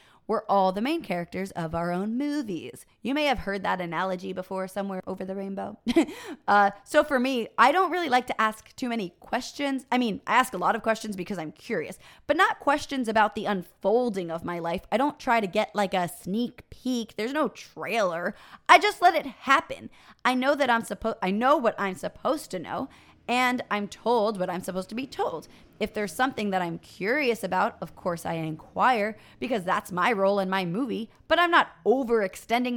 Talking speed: 205 wpm